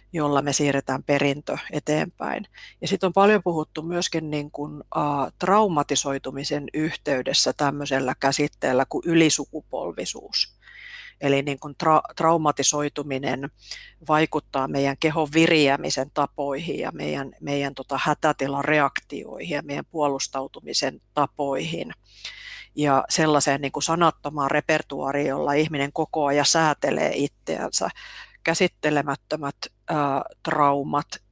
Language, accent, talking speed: Finnish, native, 100 wpm